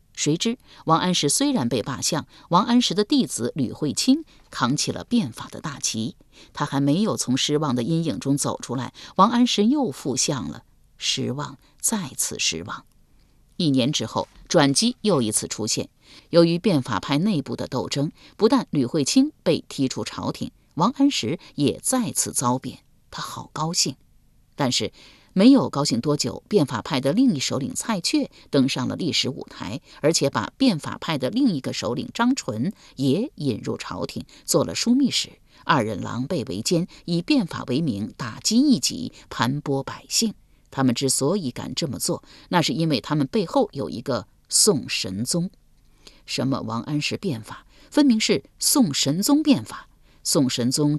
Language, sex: Chinese, female